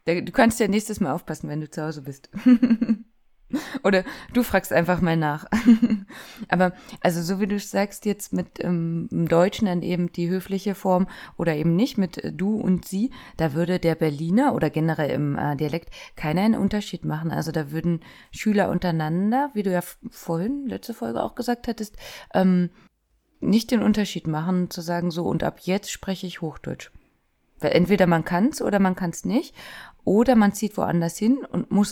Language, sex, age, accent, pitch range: Japanese, female, 20-39, German, 160-210 Hz